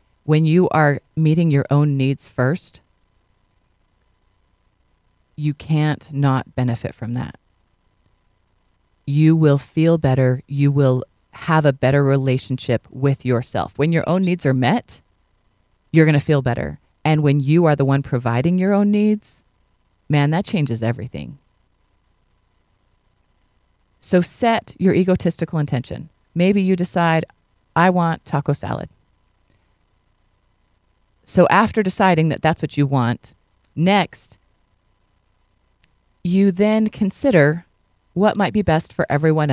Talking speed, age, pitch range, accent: 125 wpm, 30-49, 100-165 Hz, American